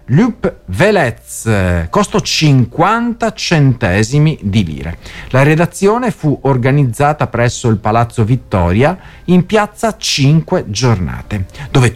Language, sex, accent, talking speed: Italian, male, native, 100 wpm